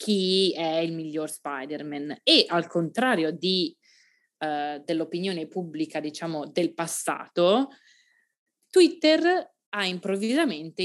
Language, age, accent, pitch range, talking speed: Italian, 20-39, native, 155-195 Hz, 90 wpm